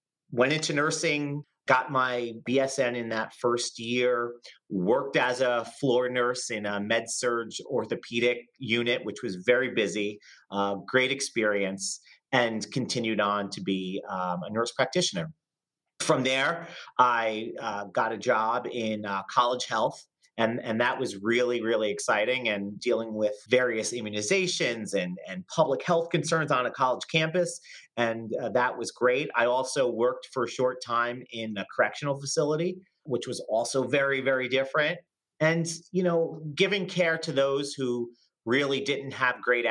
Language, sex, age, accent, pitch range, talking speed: English, male, 30-49, American, 115-145 Hz, 155 wpm